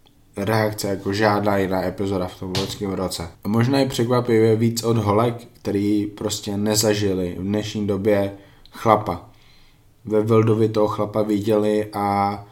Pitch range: 100-110 Hz